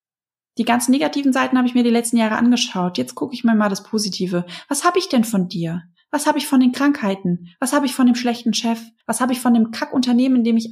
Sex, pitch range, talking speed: female, 210-260 Hz, 260 wpm